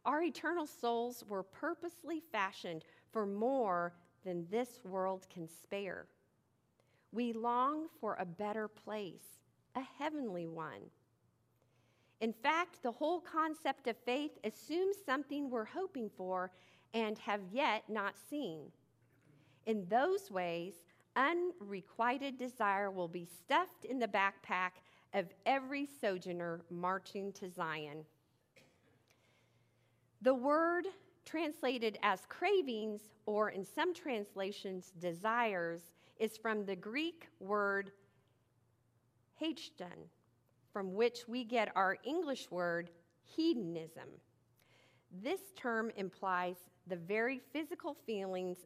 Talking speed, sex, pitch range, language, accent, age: 105 wpm, female, 180-255 Hz, English, American, 40-59